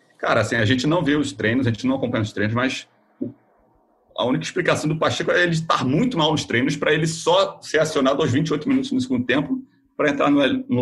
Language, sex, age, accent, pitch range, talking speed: Portuguese, male, 40-59, Brazilian, 120-195 Hz, 225 wpm